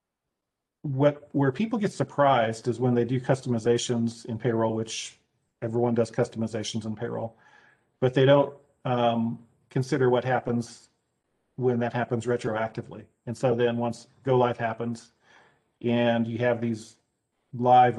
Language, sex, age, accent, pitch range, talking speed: English, male, 40-59, American, 115-130 Hz, 135 wpm